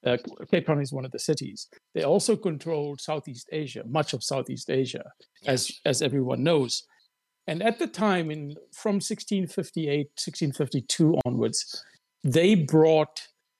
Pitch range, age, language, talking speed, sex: 140-180 Hz, 60-79, Indonesian, 140 wpm, male